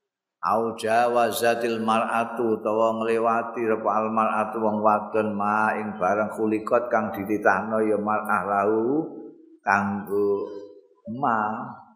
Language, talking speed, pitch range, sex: Indonesian, 90 wpm, 105-135 Hz, male